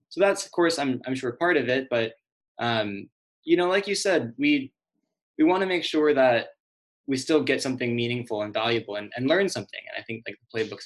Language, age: English, 20-39